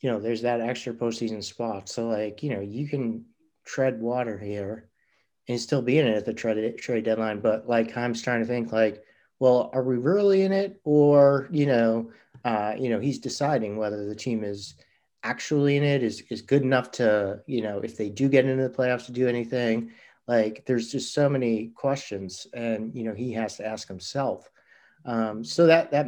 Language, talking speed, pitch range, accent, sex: English, 200 wpm, 105-130 Hz, American, male